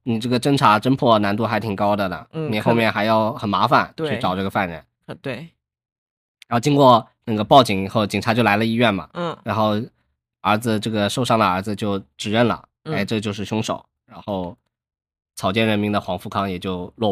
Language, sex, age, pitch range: Chinese, male, 20-39, 100-130 Hz